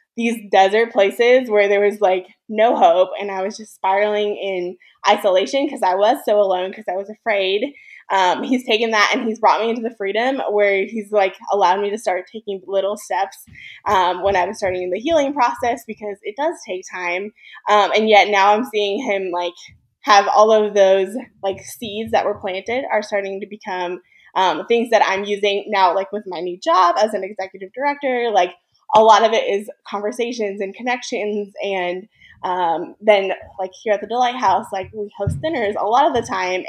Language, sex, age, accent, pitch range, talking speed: English, female, 20-39, American, 195-230 Hz, 200 wpm